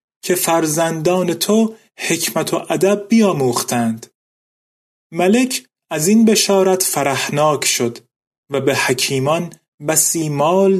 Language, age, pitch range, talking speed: Persian, 30-49, 140-190 Hz, 100 wpm